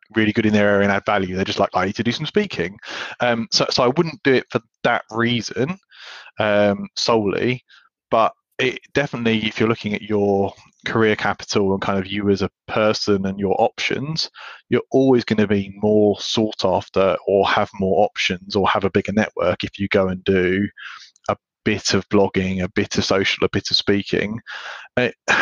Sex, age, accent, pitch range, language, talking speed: male, 20-39, British, 100-110 Hz, English, 195 wpm